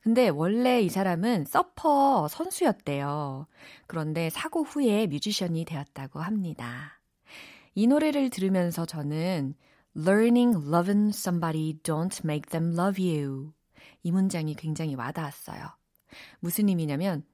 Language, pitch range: Korean, 160-245 Hz